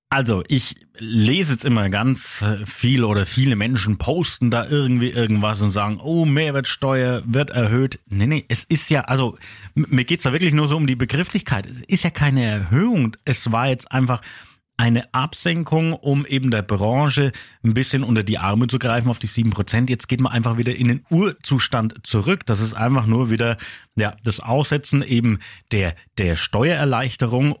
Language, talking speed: German, 180 wpm